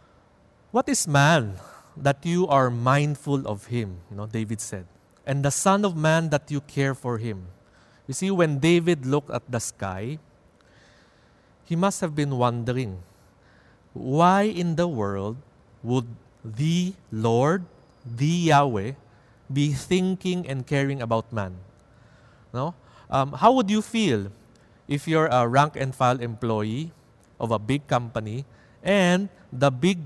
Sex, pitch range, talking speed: male, 115-150 Hz, 140 wpm